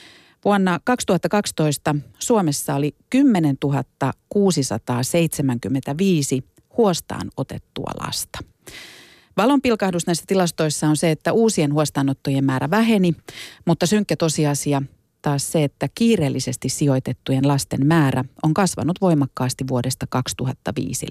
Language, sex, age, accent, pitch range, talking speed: Finnish, female, 40-59, native, 135-180 Hz, 95 wpm